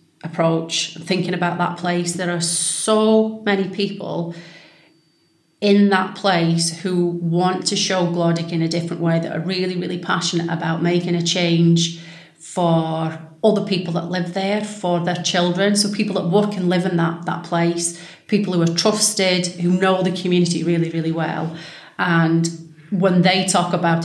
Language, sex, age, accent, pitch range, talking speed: English, female, 30-49, British, 170-190 Hz, 165 wpm